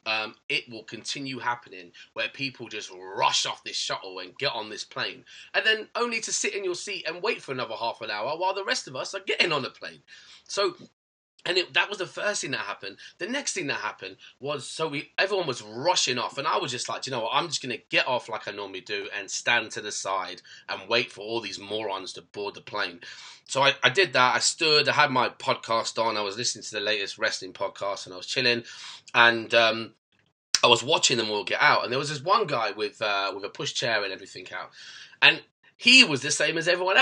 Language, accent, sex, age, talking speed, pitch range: English, British, male, 20-39, 250 wpm, 120-185 Hz